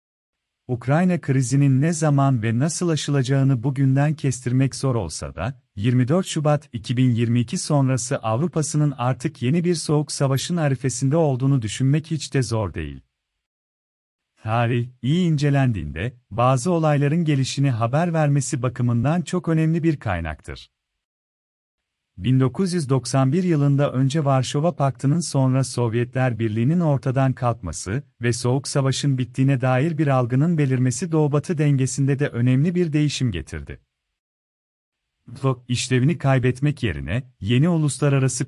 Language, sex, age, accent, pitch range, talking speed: Turkish, male, 40-59, native, 120-150 Hz, 115 wpm